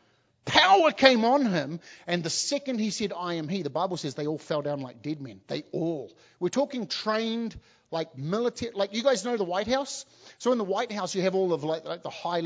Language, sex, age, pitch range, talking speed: English, male, 30-49, 150-210 Hz, 235 wpm